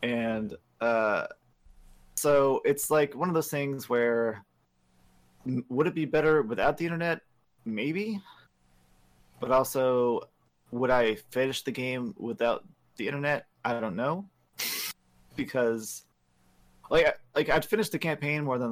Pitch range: 110-140 Hz